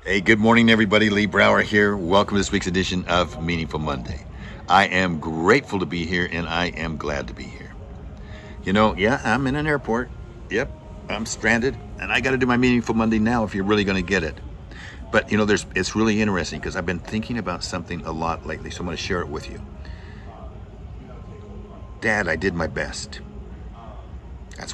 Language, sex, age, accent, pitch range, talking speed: English, male, 60-79, American, 80-100 Hz, 195 wpm